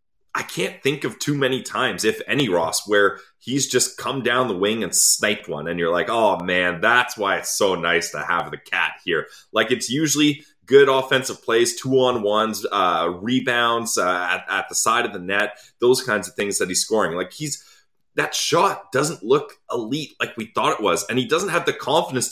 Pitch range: 125-175 Hz